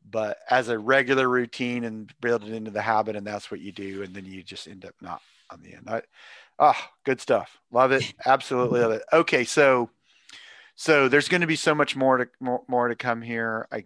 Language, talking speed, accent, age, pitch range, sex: English, 220 wpm, American, 40-59, 105-125 Hz, male